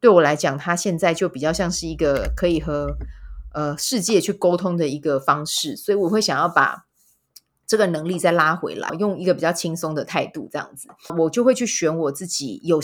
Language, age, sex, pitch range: Chinese, 20-39, female, 150-200 Hz